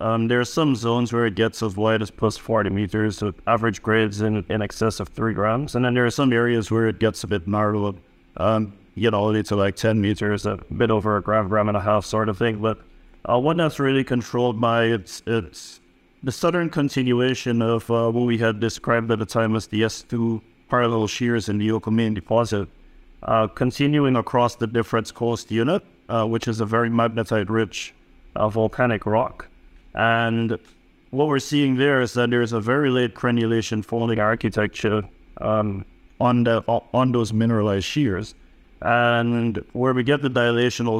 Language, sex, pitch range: English, male, 105-120 Hz